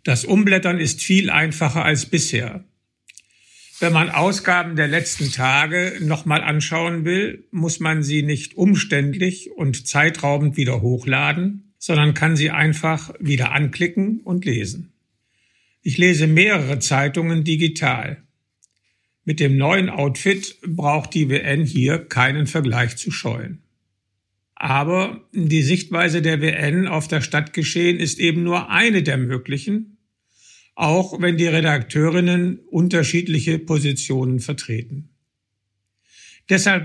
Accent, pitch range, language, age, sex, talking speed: German, 130-175 Hz, German, 50-69, male, 115 wpm